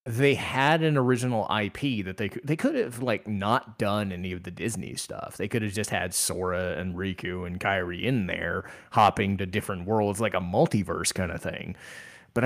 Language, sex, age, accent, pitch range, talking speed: English, male, 20-39, American, 95-125 Hz, 200 wpm